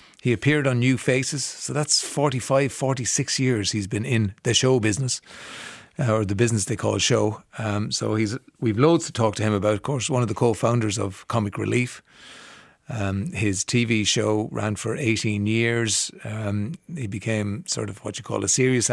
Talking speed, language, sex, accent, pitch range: 190 wpm, English, male, Irish, 110-140 Hz